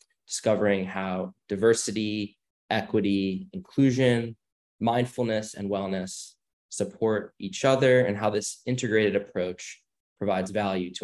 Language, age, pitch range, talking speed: English, 10-29, 95-115 Hz, 105 wpm